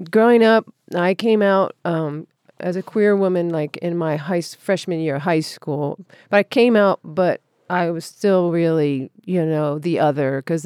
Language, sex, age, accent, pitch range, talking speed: English, female, 40-59, American, 155-190 Hz, 185 wpm